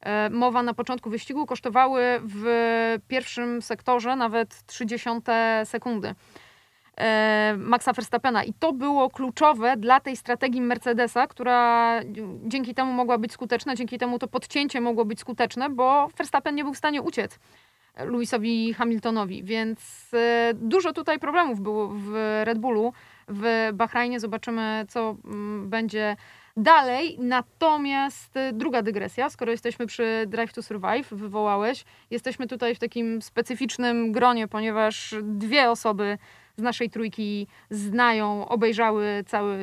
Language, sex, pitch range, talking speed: Polish, female, 220-255 Hz, 125 wpm